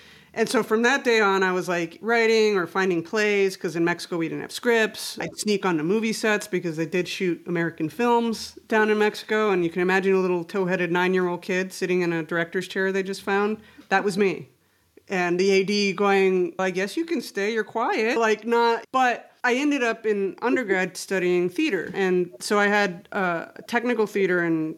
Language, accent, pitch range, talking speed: English, American, 175-225 Hz, 200 wpm